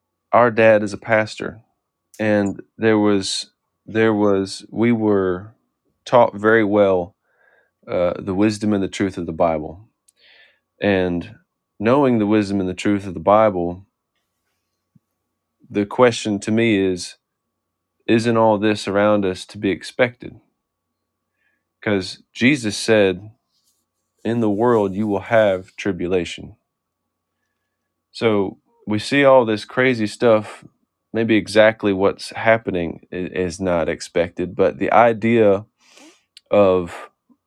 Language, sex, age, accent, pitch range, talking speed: English, male, 30-49, American, 90-110 Hz, 120 wpm